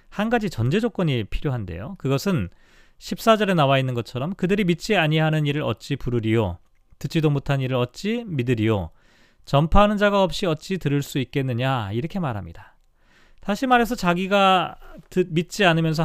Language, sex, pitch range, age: Korean, male, 130-195 Hz, 40-59